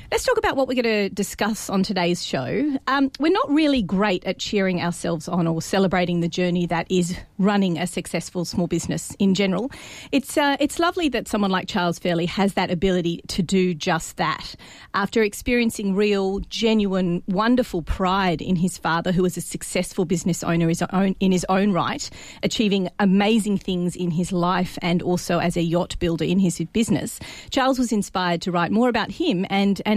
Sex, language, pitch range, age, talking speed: female, English, 175-215 Hz, 40-59, 185 wpm